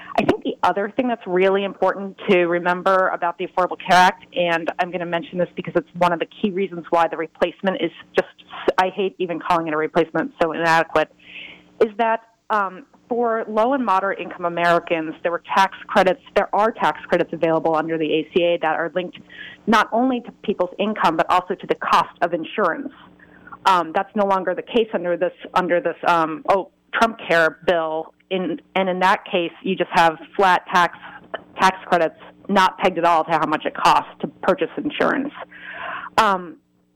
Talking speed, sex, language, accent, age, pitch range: 185 wpm, female, English, American, 30-49, 170-205 Hz